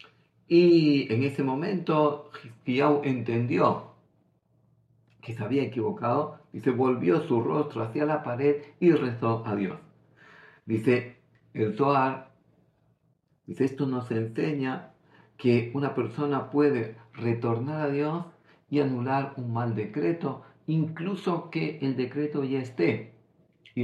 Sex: male